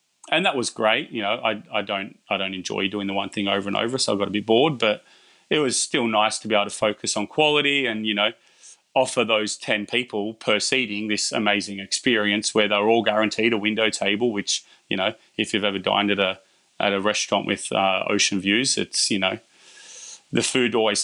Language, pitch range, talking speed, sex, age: English, 100-110 Hz, 220 wpm, male, 30-49